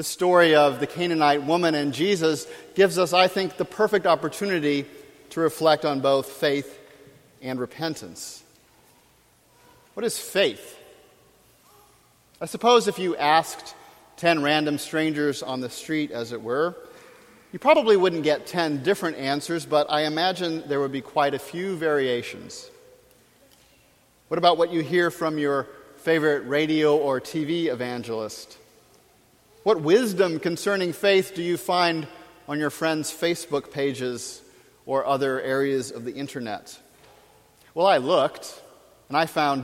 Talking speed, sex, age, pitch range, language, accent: 140 wpm, male, 40-59, 140-180 Hz, English, American